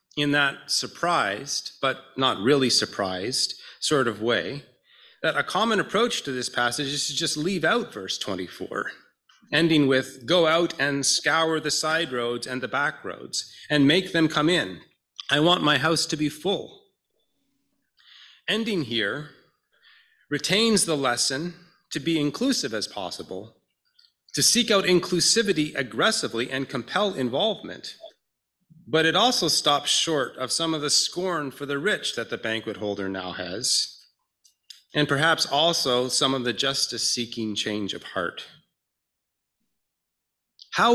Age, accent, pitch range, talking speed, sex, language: 30-49, American, 125-175 Hz, 145 wpm, male, English